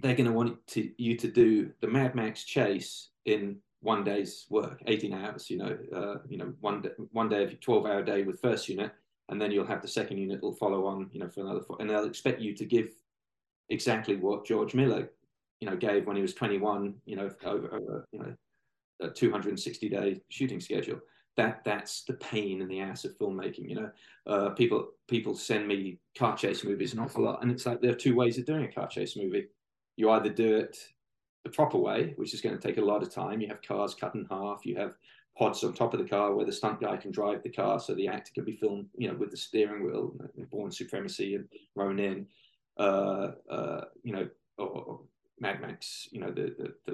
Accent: British